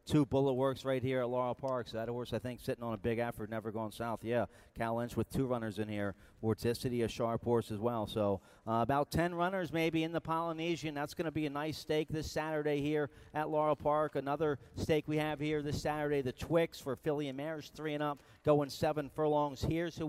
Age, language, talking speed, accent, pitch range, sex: 40-59, English, 235 wpm, American, 125-150 Hz, male